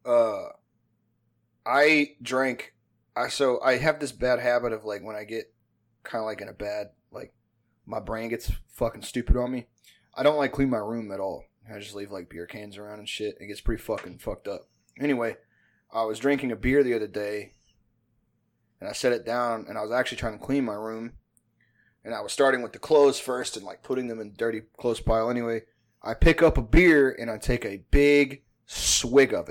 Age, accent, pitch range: 20-39, American, 110-125 Hz